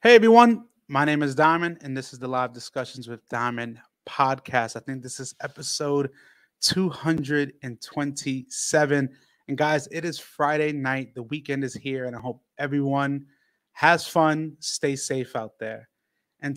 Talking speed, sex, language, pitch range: 150 wpm, male, English, 135-160 Hz